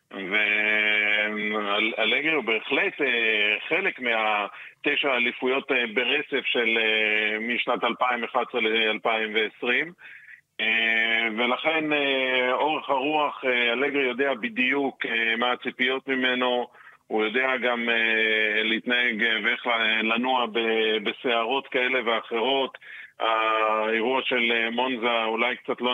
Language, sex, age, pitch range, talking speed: Hebrew, male, 40-59, 110-125 Hz, 105 wpm